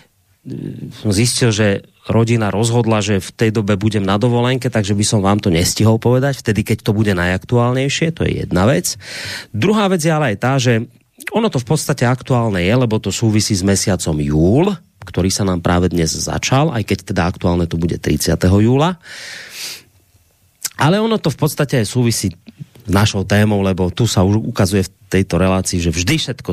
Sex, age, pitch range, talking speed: male, 30-49, 95-130 Hz, 185 wpm